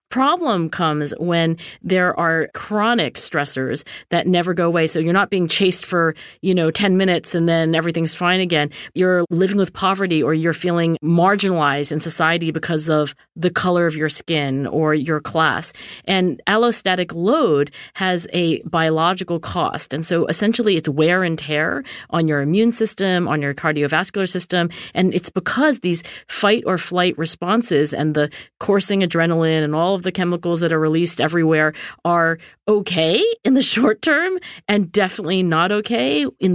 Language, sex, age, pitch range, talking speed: English, female, 40-59, 160-190 Hz, 165 wpm